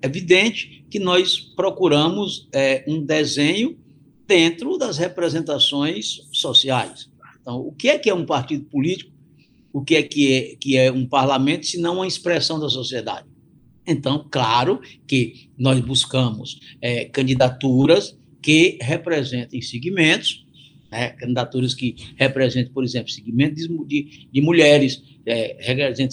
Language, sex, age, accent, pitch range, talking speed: Portuguese, male, 60-79, Brazilian, 130-175 Hz, 130 wpm